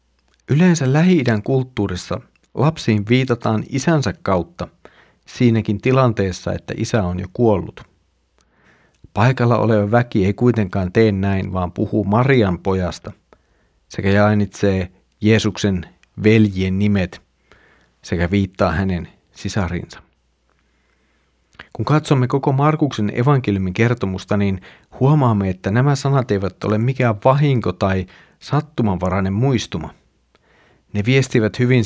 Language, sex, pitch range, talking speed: Finnish, male, 95-120 Hz, 105 wpm